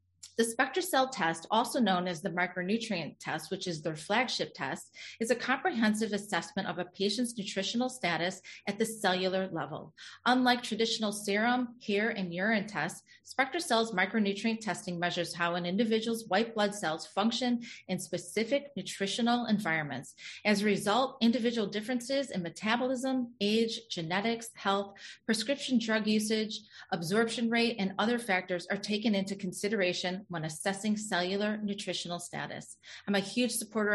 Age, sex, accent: 30-49, female, American